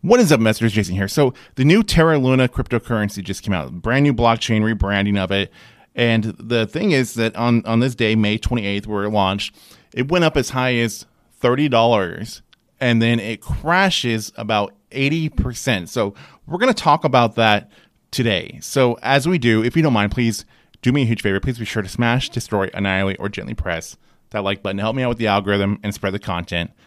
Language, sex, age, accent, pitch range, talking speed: English, male, 30-49, American, 105-135 Hz, 210 wpm